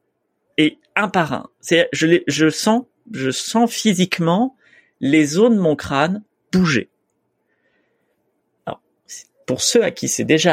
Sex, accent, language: male, French, French